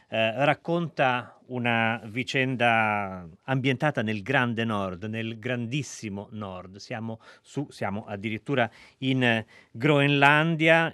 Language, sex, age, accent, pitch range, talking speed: Italian, male, 40-59, native, 105-140 Hz, 95 wpm